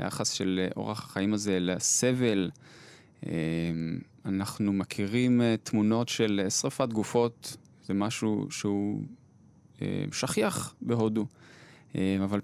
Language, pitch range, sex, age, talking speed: Hebrew, 105-140 Hz, male, 20-39, 85 wpm